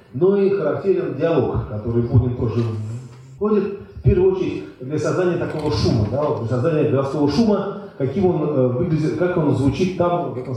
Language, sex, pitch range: Russian, male, 120-160 Hz